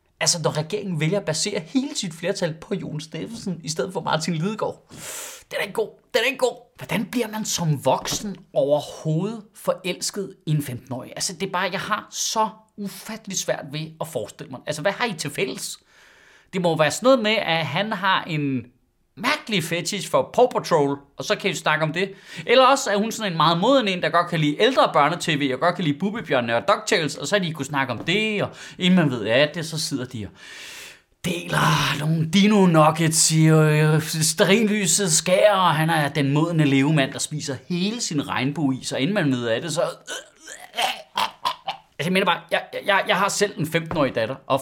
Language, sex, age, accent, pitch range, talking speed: Danish, male, 30-49, native, 155-205 Hz, 205 wpm